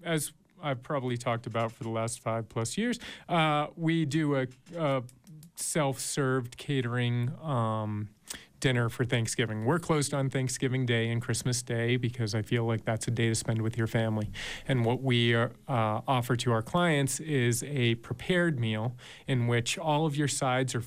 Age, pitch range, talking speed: 30-49, 115-135 Hz, 175 wpm